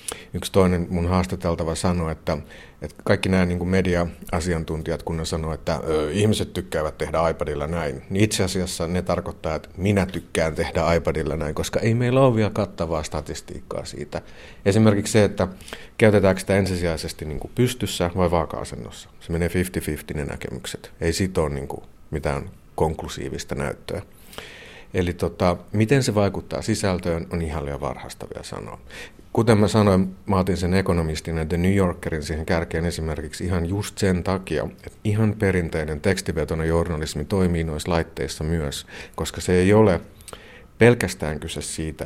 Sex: male